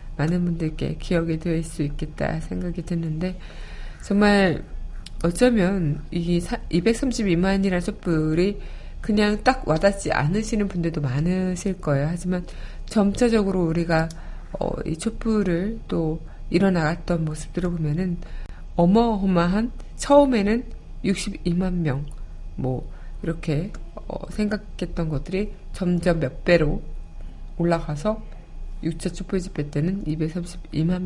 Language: Korean